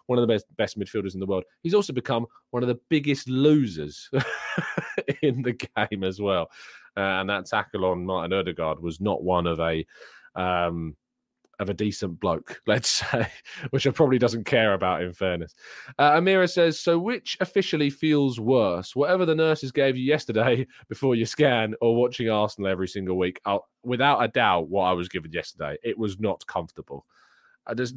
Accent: British